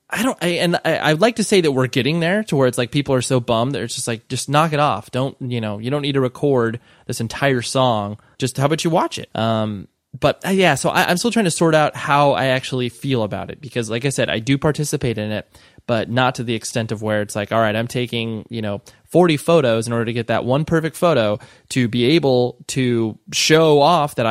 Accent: American